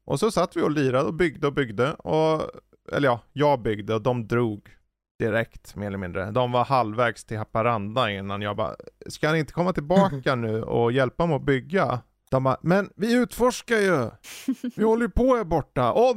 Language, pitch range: Swedish, 120-175 Hz